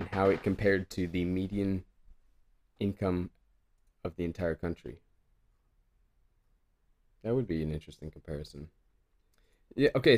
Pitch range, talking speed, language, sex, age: 80-100 Hz, 120 wpm, English, male, 20-39